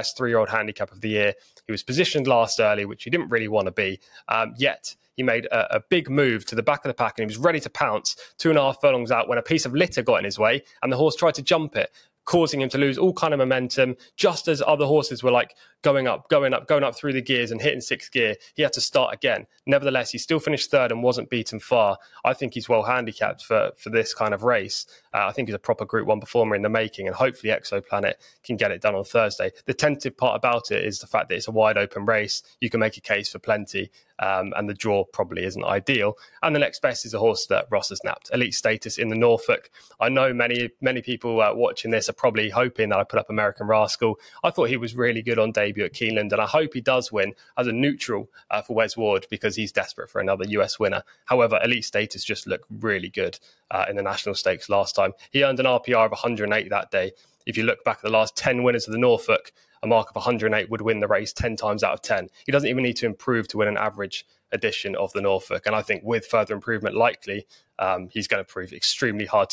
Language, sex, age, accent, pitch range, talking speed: English, male, 20-39, British, 110-140 Hz, 255 wpm